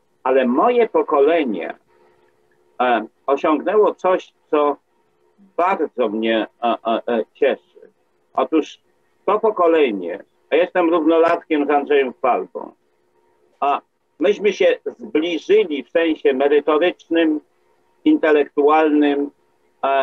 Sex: male